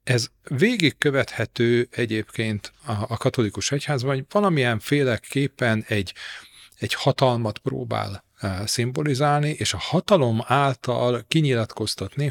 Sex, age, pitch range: male, 40-59, 105-140 Hz